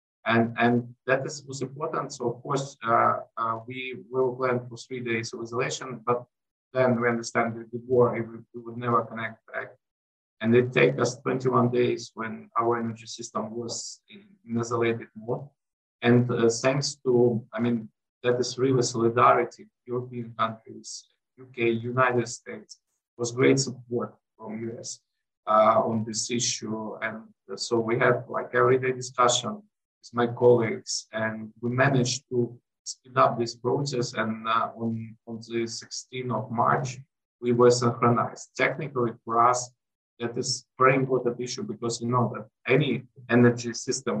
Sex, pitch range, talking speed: male, 115-130 Hz, 155 wpm